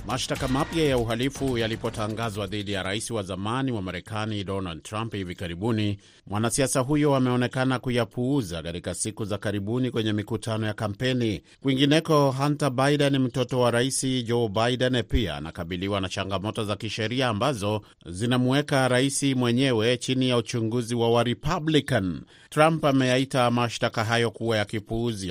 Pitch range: 100-125 Hz